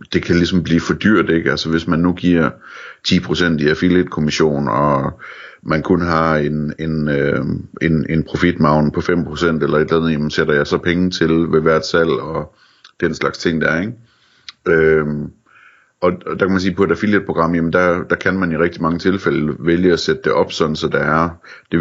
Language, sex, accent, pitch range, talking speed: Danish, male, native, 75-90 Hz, 210 wpm